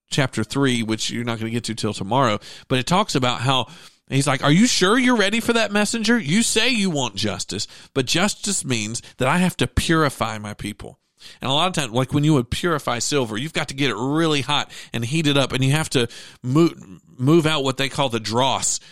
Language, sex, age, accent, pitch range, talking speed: English, male, 40-59, American, 115-160 Hz, 235 wpm